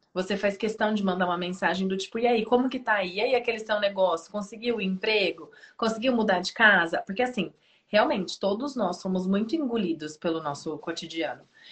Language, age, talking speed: Portuguese, 20-39, 195 wpm